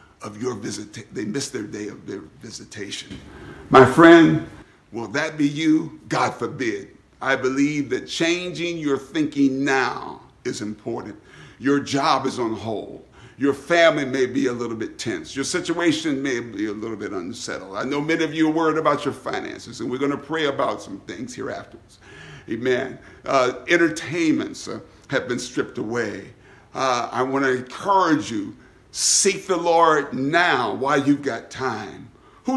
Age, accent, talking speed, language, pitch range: 50-69, American, 165 wpm, English, 140-190 Hz